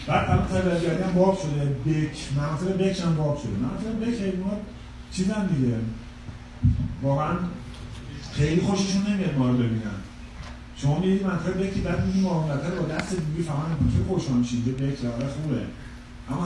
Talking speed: 140 wpm